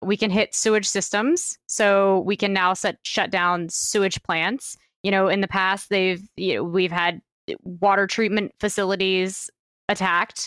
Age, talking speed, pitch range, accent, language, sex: 20-39, 160 wpm, 175-205 Hz, American, English, female